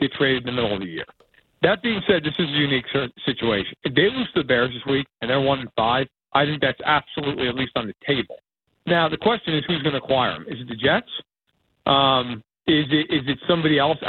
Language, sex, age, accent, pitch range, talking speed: English, male, 50-69, American, 135-190 Hz, 240 wpm